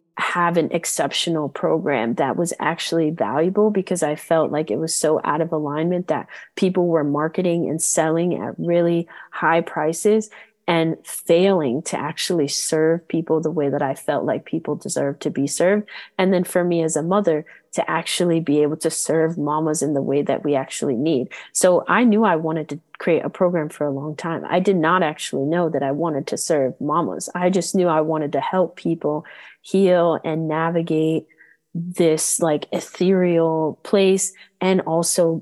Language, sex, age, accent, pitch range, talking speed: English, female, 30-49, American, 155-180 Hz, 180 wpm